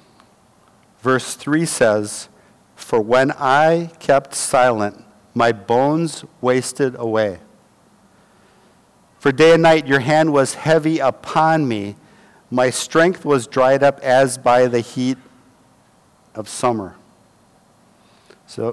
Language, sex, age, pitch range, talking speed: English, male, 50-69, 120-145 Hz, 110 wpm